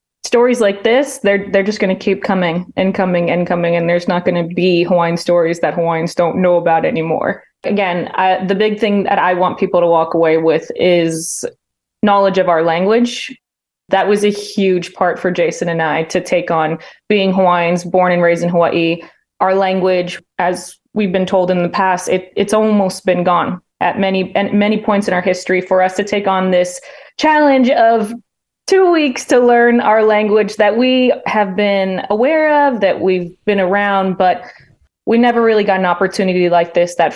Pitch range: 175-205 Hz